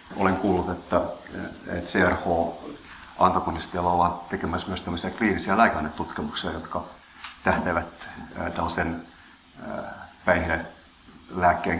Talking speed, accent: 65 wpm, native